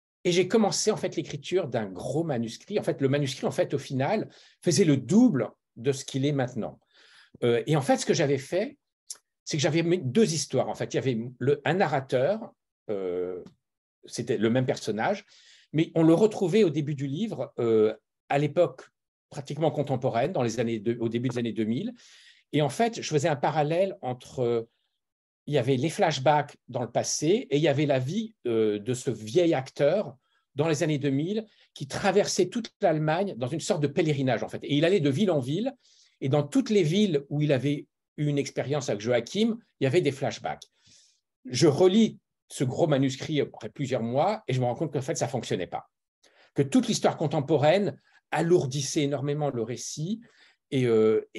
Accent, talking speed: French, 200 wpm